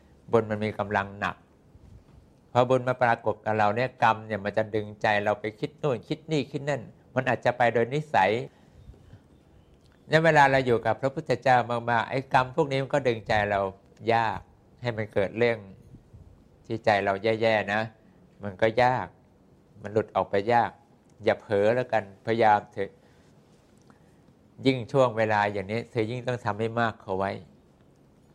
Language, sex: English, male